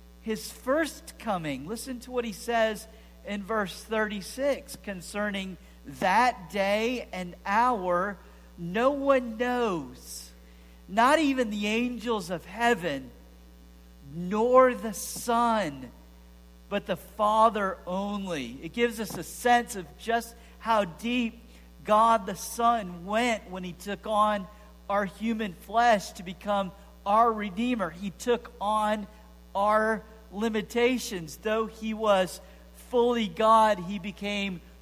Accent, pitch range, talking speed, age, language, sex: American, 170-225 Hz, 115 wpm, 50-69, English, male